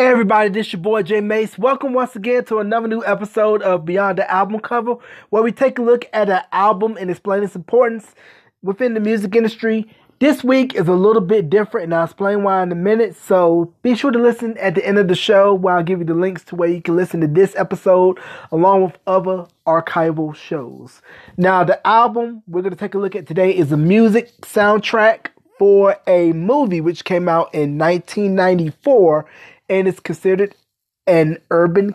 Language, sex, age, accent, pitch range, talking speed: English, male, 20-39, American, 175-220 Hz, 205 wpm